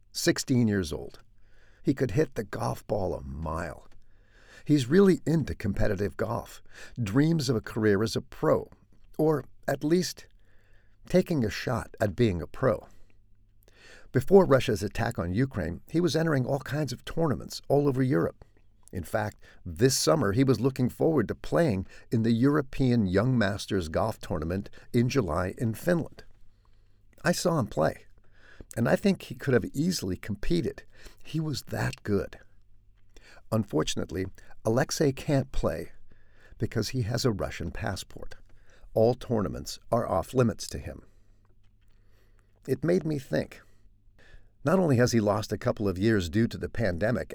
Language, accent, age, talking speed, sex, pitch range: English, American, 50-69, 150 wpm, male, 100-135 Hz